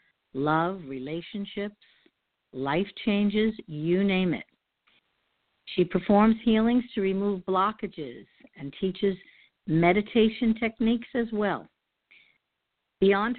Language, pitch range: English, 155-220 Hz